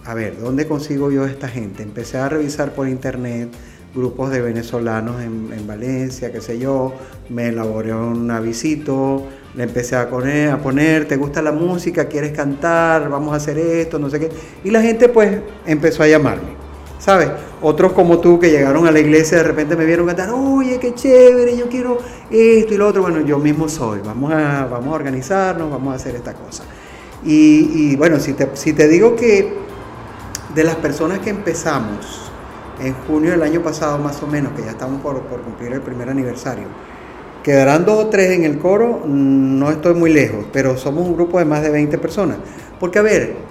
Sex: male